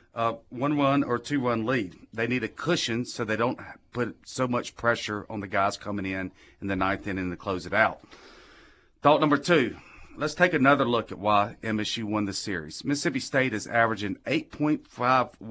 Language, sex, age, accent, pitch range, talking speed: English, male, 40-59, American, 105-125 Hz, 180 wpm